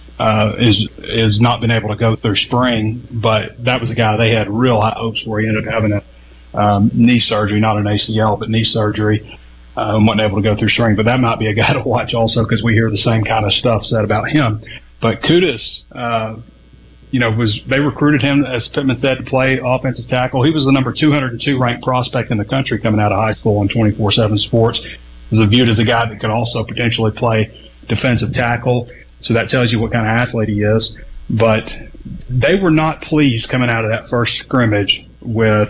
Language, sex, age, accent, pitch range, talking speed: English, male, 30-49, American, 105-120 Hz, 230 wpm